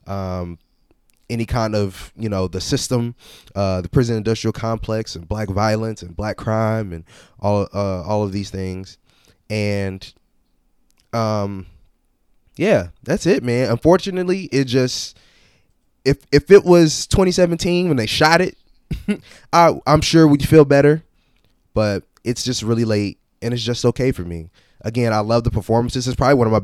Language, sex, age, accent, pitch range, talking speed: English, male, 20-39, American, 95-120 Hz, 160 wpm